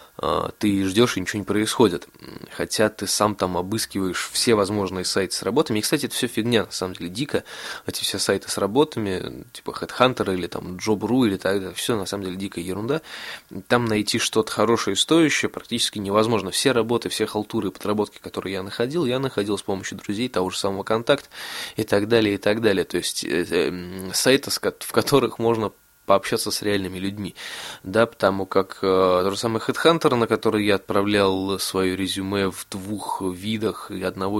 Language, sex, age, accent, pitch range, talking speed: Russian, male, 20-39, native, 95-115 Hz, 185 wpm